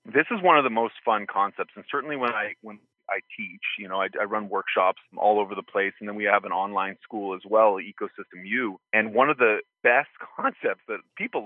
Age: 30-49